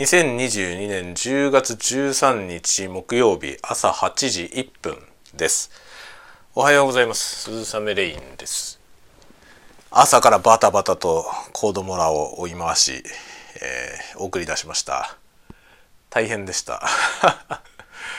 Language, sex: Japanese, male